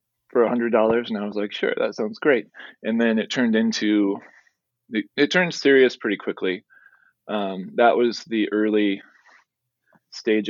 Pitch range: 100-120 Hz